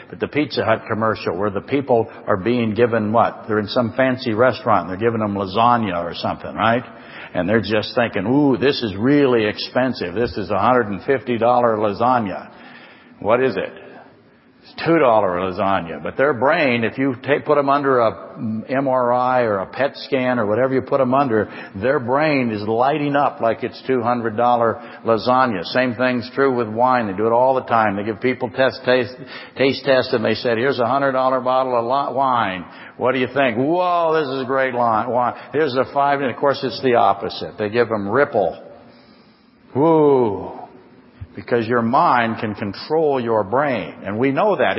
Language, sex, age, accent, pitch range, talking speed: English, male, 60-79, American, 115-140 Hz, 185 wpm